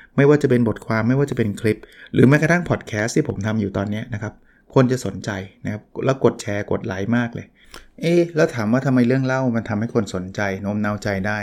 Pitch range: 105-130 Hz